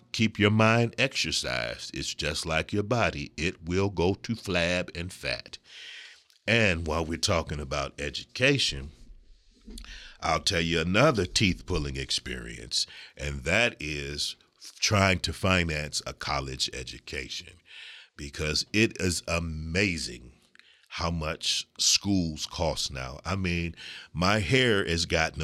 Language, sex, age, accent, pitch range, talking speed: English, male, 40-59, American, 75-100 Hz, 125 wpm